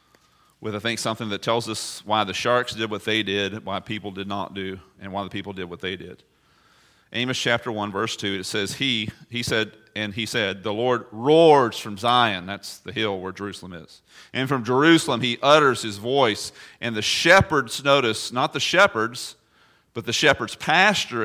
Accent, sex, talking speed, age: American, male, 195 wpm, 40-59